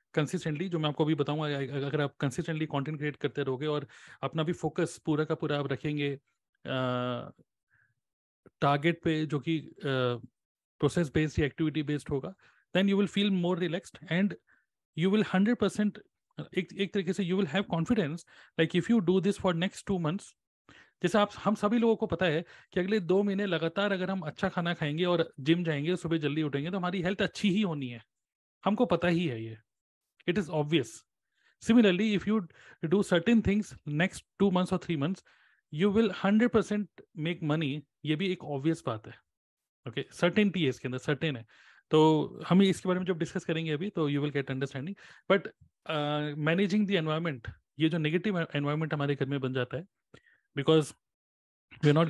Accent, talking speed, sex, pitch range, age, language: native, 140 wpm, male, 145-190 Hz, 30-49, Hindi